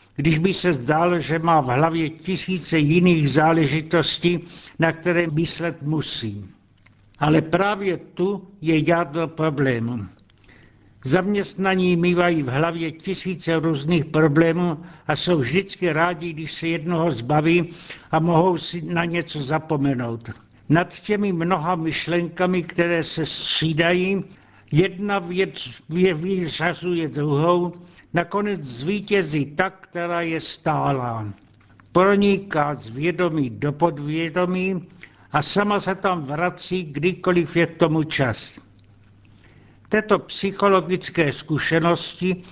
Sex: male